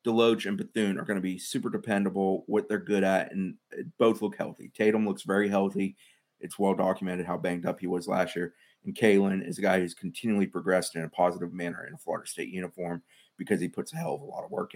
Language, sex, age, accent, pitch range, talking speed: English, male, 30-49, American, 95-110 Hz, 235 wpm